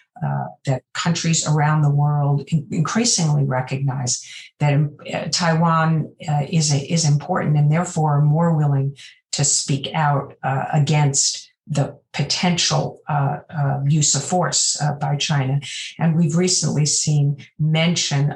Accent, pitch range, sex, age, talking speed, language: American, 140-155 Hz, female, 50-69, 125 wpm, English